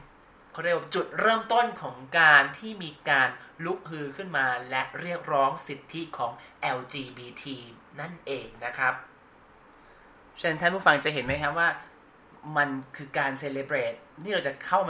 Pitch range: 135-170 Hz